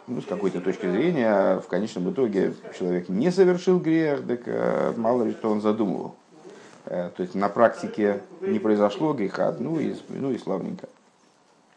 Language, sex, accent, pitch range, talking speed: Russian, male, native, 95-120 Hz, 155 wpm